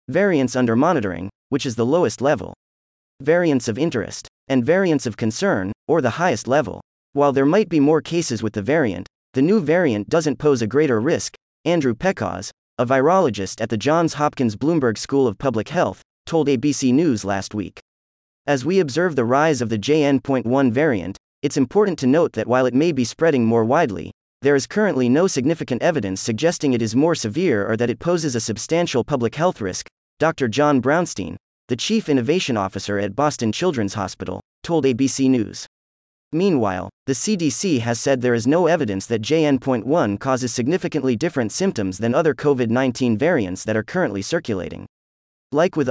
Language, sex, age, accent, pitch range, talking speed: English, male, 30-49, American, 110-150 Hz, 175 wpm